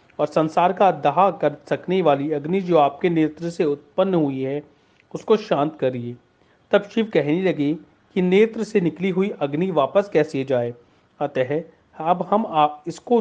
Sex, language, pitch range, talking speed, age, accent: male, Hindi, 145-190 Hz, 160 wpm, 40-59, native